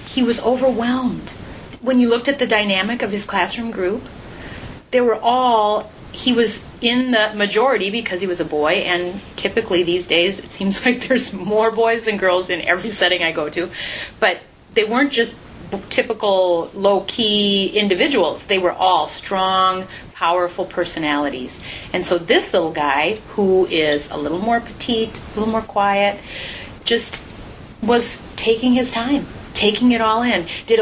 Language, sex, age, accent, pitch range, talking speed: English, female, 30-49, American, 185-235 Hz, 160 wpm